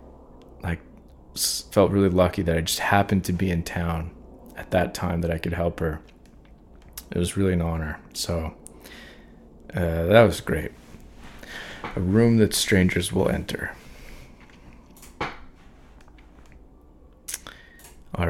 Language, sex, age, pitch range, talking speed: English, male, 30-49, 75-100 Hz, 120 wpm